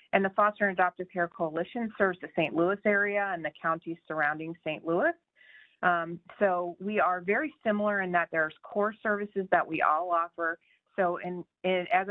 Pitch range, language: 165-195 Hz, English